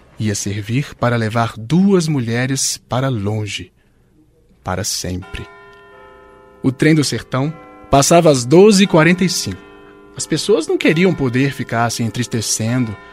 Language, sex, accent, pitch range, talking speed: Portuguese, male, Brazilian, 115-170 Hz, 115 wpm